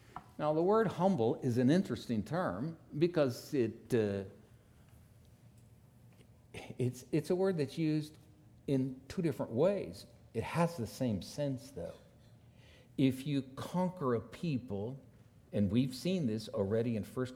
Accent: American